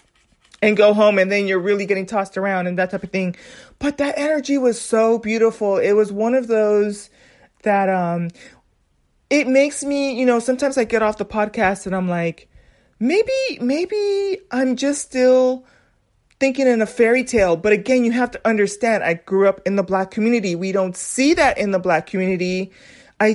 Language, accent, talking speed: English, American, 190 wpm